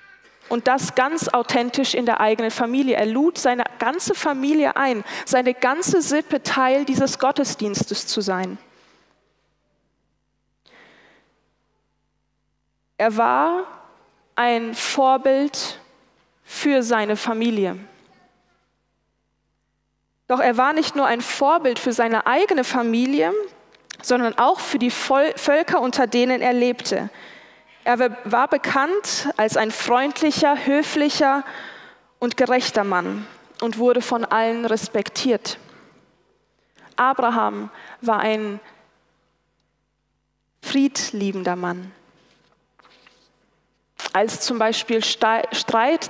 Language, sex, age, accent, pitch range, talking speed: German, female, 20-39, German, 230-280 Hz, 95 wpm